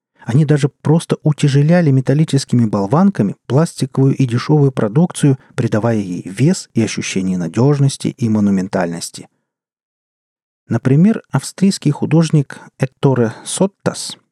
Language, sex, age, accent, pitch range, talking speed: Russian, male, 40-59, native, 120-160 Hz, 95 wpm